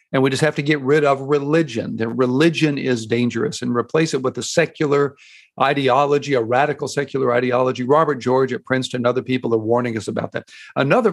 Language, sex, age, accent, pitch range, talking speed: English, male, 60-79, American, 130-155 Hz, 200 wpm